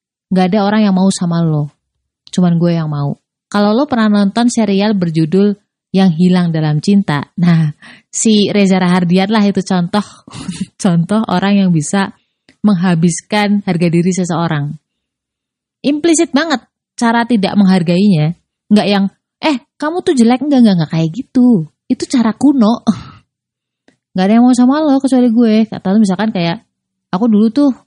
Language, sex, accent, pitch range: Indonesian, female, native, 180-235 Hz